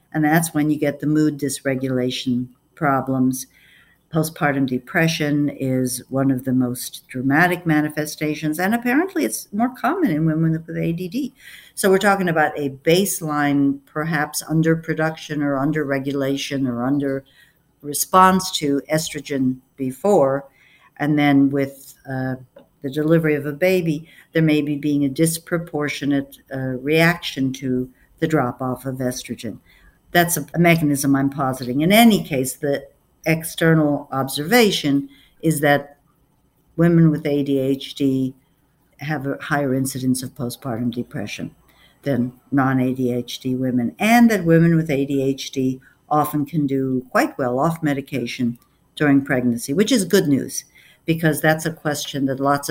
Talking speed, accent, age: 130 wpm, American, 60-79